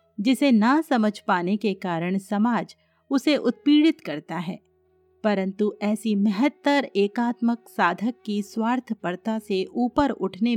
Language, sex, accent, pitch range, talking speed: Hindi, female, native, 195-260 Hz, 120 wpm